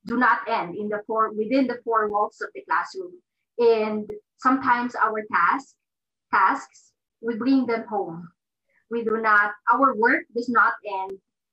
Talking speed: 155 wpm